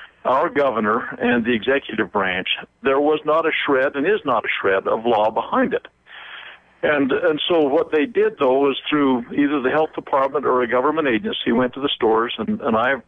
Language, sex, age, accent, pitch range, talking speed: English, male, 60-79, American, 125-155 Hz, 200 wpm